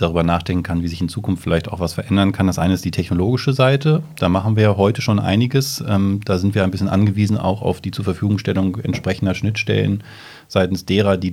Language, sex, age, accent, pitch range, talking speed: German, male, 30-49, German, 90-110 Hz, 210 wpm